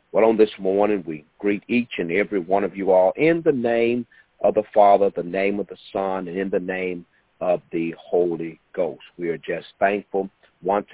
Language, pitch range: English, 100-145 Hz